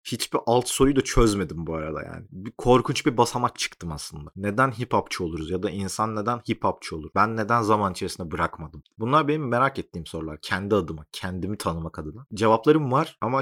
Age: 30-49